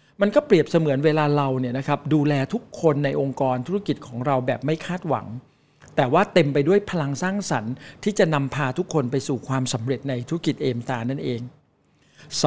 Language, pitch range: Thai, 135-170 Hz